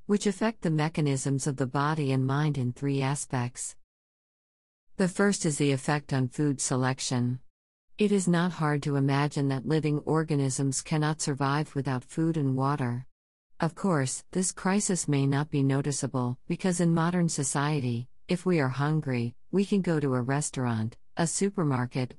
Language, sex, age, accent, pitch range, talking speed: German, female, 50-69, American, 135-160 Hz, 160 wpm